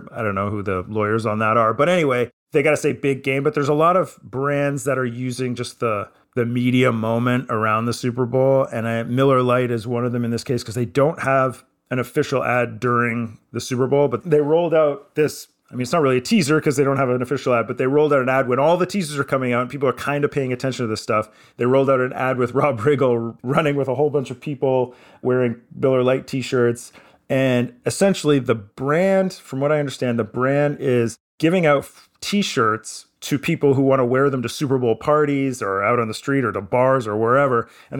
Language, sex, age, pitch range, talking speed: English, male, 30-49, 120-140 Hz, 245 wpm